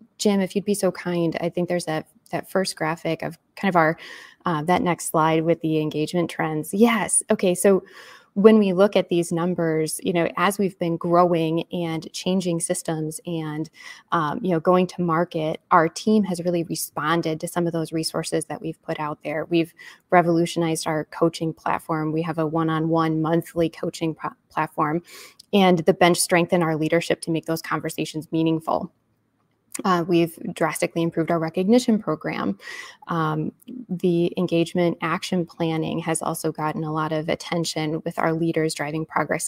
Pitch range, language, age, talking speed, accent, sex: 160-180 Hz, English, 20-39, 175 wpm, American, female